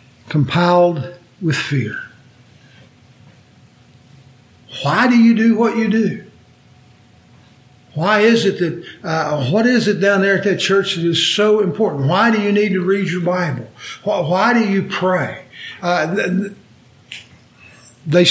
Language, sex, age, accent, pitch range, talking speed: English, male, 60-79, American, 135-190 Hz, 140 wpm